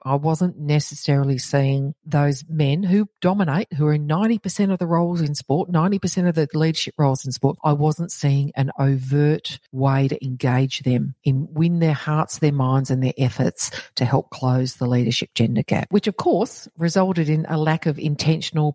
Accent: Australian